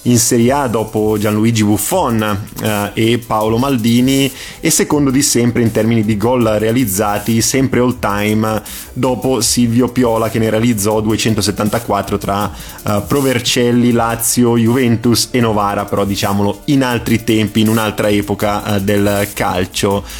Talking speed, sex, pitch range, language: 140 wpm, male, 105-125 Hz, Italian